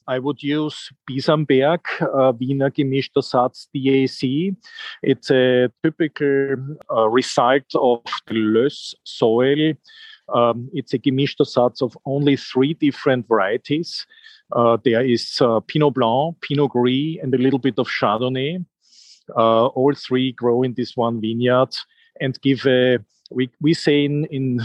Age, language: 40-59, English